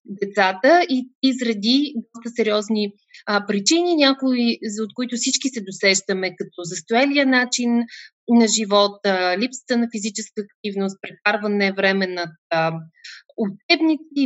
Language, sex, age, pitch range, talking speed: Bulgarian, female, 20-39, 200-260 Hz, 115 wpm